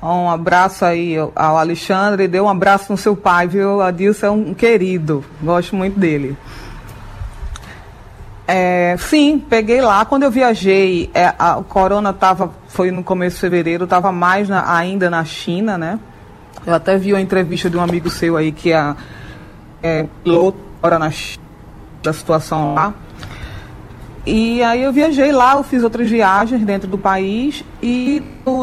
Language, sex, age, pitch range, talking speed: Portuguese, female, 20-39, 170-210 Hz, 165 wpm